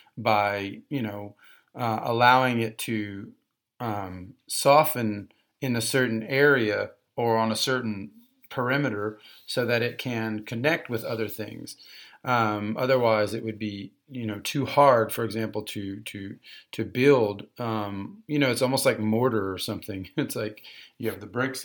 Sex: male